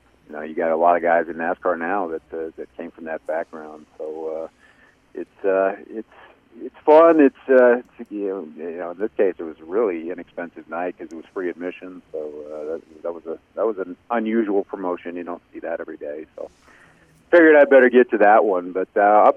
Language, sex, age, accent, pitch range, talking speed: English, male, 40-59, American, 85-110 Hz, 230 wpm